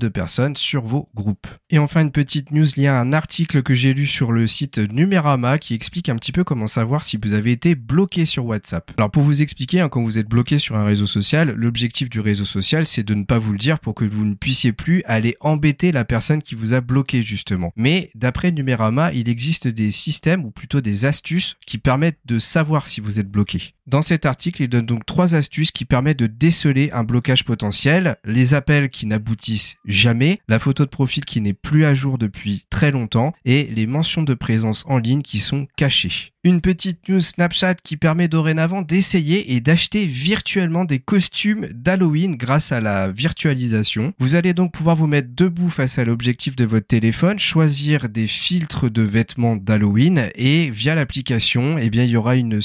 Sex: male